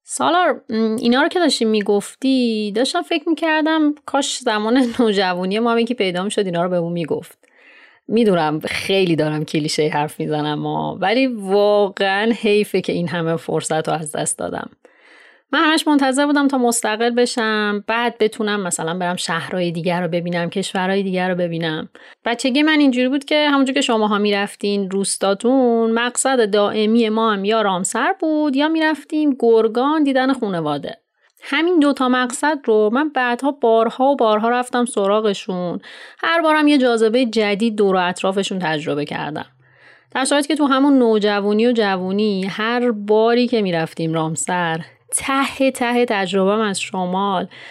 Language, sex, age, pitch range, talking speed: Persian, female, 30-49, 180-255 Hz, 150 wpm